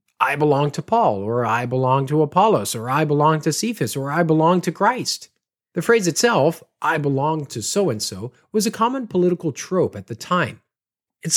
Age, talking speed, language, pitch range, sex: 40-59, 185 wpm, English, 130-185 Hz, male